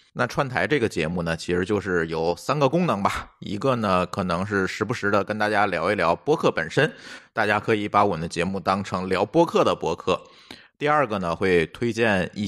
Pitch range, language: 90-120 Hz, Chinese